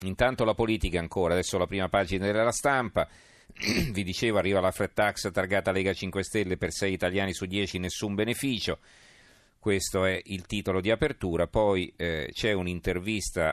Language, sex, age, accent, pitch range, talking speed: Italian, male, 40-59, native, 85-105 Hz, 160 wpm